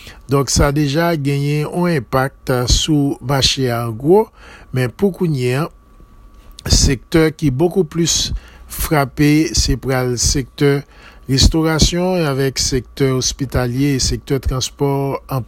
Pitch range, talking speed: 130-155 Hz, 130 wpm